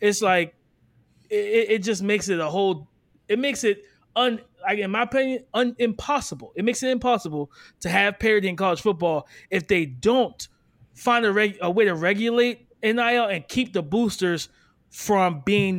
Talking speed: 175 wpm